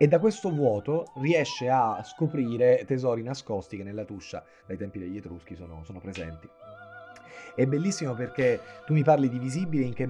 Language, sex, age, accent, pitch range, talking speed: Italian, male, 30-49, native, 115-165 Hz, 170 wpm